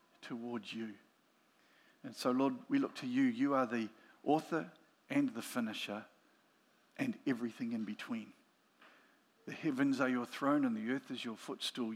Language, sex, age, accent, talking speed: English, male, 50-69, Australian, 155 wpm